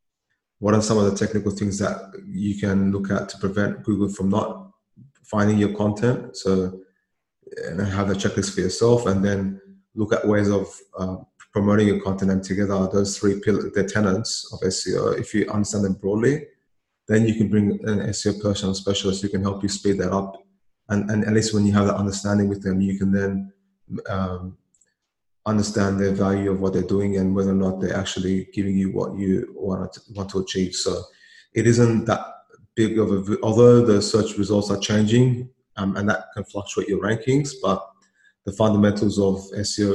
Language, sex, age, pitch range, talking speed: English, male, 20-39, 95-105 Hz, 190 wpm